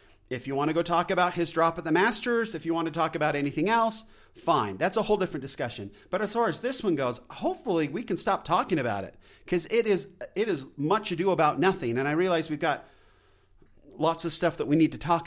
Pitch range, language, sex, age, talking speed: 105-170 Hz, English, male, 40-59, 245 wpm